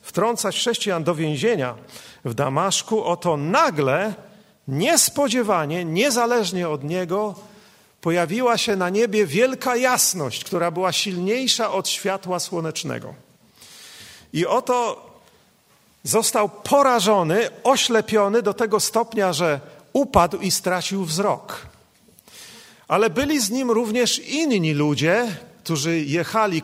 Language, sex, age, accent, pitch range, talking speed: Polish, male, 40-59, native, 160-220 Hz, 105 wpm